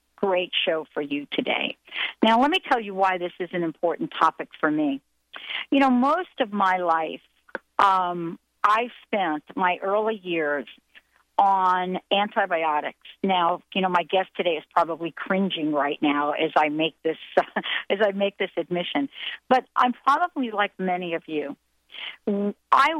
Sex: female